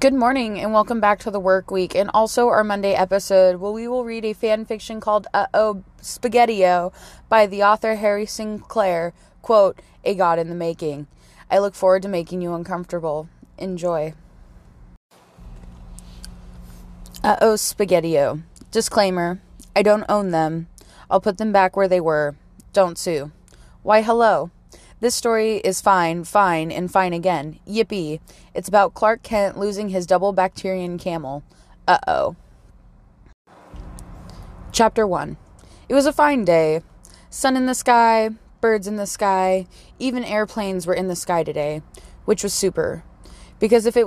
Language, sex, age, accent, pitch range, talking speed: English, female, 20-39, American, 175-215 Hz, 150 wpm